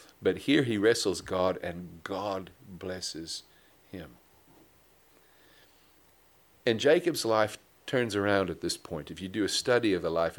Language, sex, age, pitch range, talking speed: English, male, 50-69, 90-120 Hz, 145 wpm